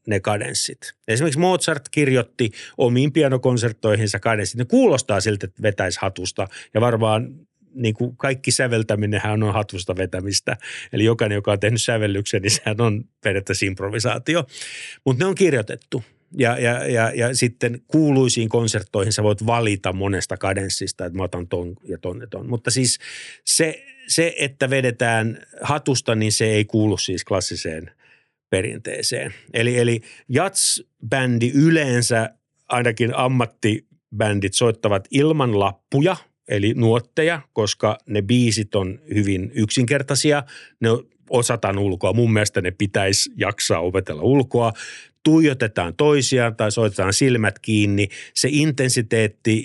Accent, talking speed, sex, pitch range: native, 130 wpm, male, 105-130 Hz